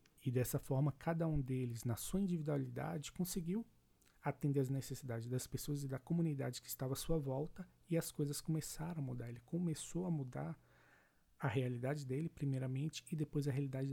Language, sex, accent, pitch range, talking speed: Portuguese, male, Brazilian, 125-155 Hz, 175 wpm